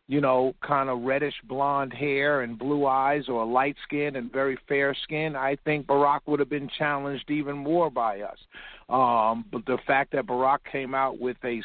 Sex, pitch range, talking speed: male, 130-150 Hz, 195 wpm